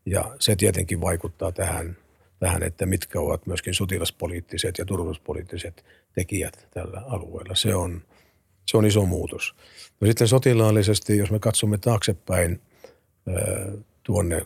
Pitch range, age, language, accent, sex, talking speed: 85-105 Hz, 50-69, Finnish, native, male, 125 wpm